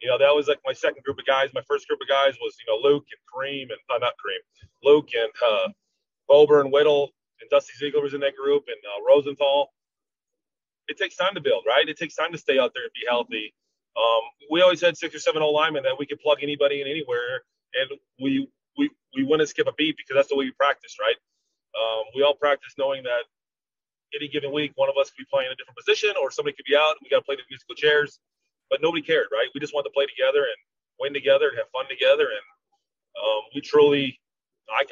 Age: 30-49